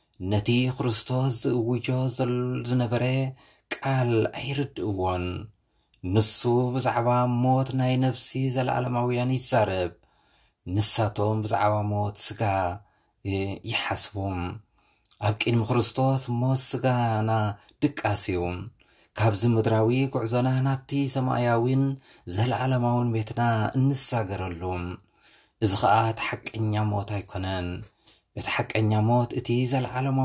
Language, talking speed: English, 90 wpm